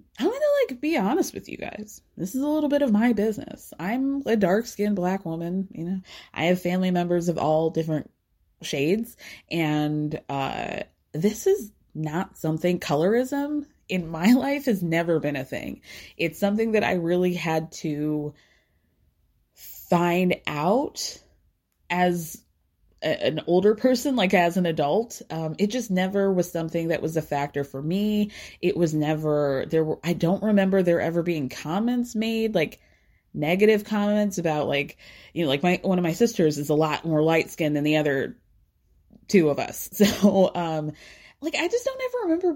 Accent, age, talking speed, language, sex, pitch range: American, 20-39, 175 wpm, English, female, 155-210 Hz